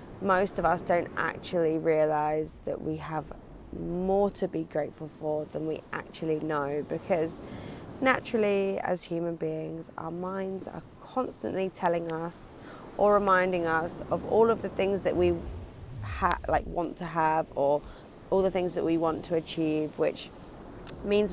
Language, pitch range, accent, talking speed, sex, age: English, 155-190 Hz, British, 155 wpm, female, 20-39